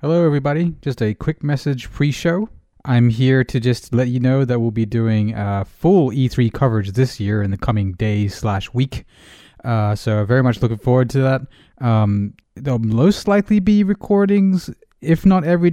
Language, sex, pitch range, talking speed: English, male, 105-140 Hz, 180 wpm